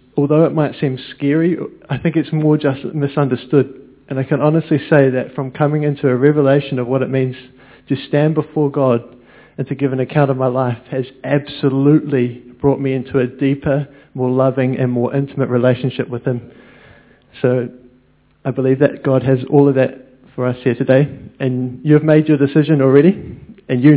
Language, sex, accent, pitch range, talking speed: English, male, Australian, 130-145 Hz, 185 wpm